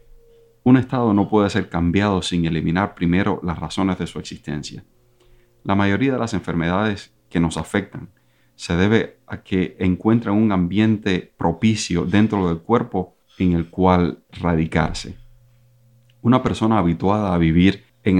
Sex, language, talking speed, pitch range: male, Spanish, 140 wpm, 85-110 Hz